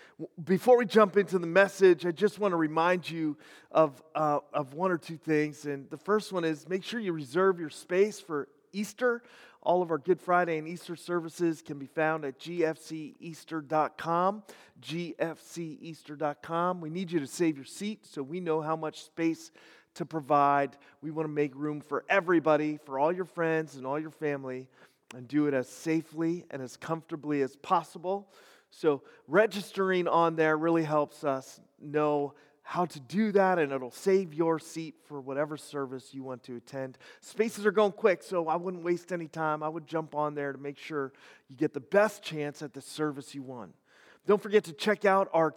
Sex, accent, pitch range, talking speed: male, American, 150-185 Hz, 190 wpm